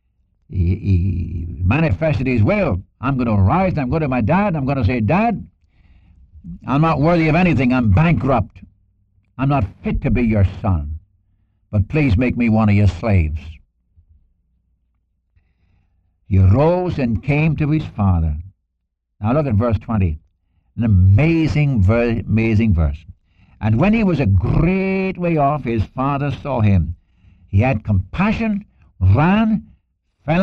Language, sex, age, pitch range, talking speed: English, male, 60-79, 90-140 Hz, 145 wpm